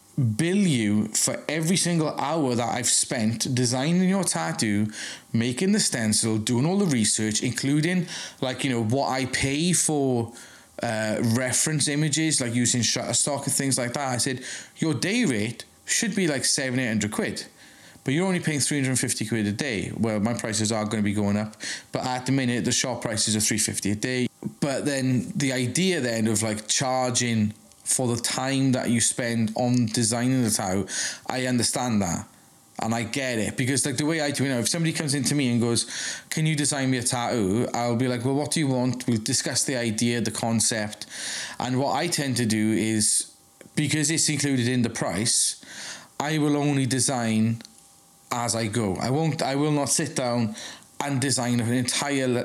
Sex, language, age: male, English, 20-39